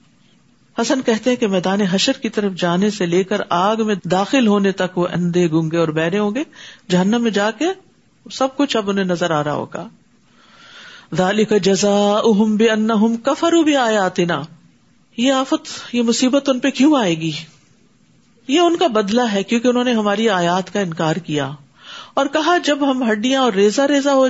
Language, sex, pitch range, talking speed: Urdu, female, 195-270 Hz, 185 wpm